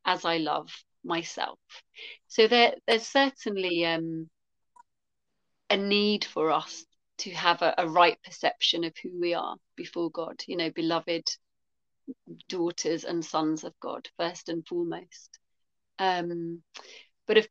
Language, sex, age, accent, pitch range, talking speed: English, female, 30-49, British, 170-225 Hz, 130 wpm